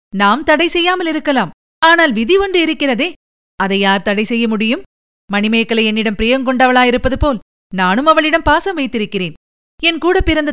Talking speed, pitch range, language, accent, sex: 135 wpm, 200-260 Hz, Tamil, native, female